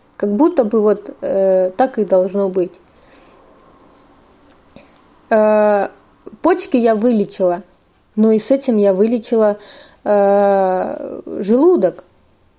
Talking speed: 100 wpm